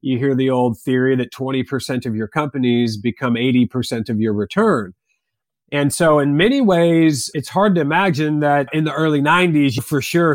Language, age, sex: English, 30-49, male